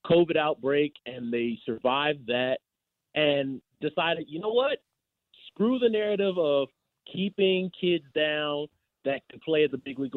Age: 30-49